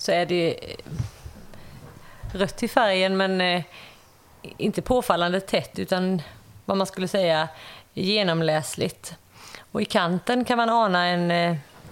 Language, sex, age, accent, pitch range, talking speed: Swedish, female, 30-49, native, 165-225 Hz, 125 wpm